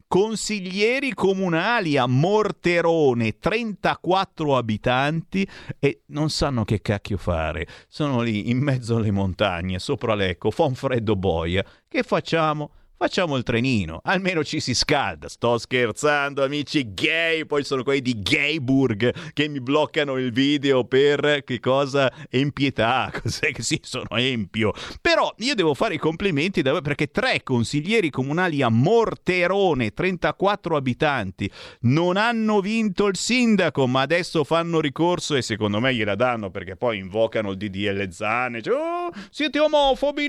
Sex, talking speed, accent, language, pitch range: male, 140 wpm, native, Italian, 120-195 Hz